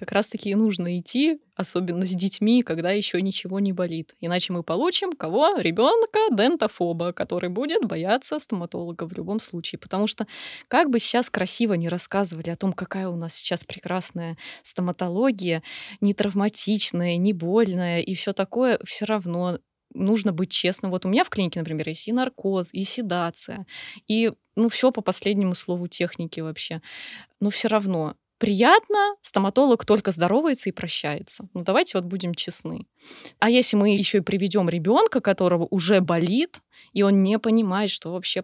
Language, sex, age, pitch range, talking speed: Russian, female, 20-39, 175-225 Hz, 160 wpm